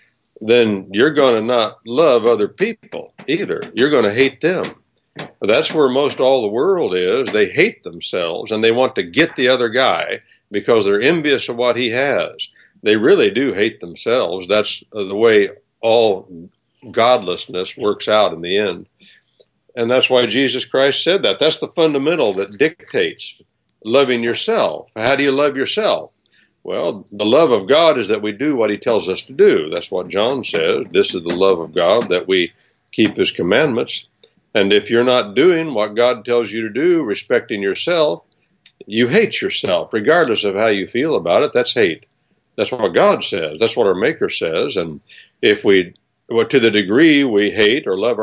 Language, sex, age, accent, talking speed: English, male, 60-79, American, 185 wpm